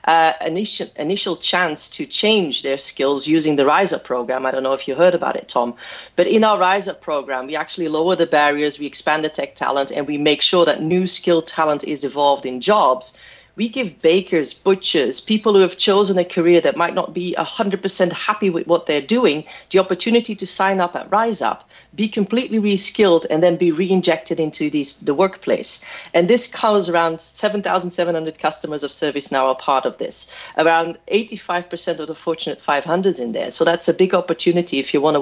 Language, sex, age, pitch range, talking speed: English, female, 30-49, 155-195 Hz, 205 wpm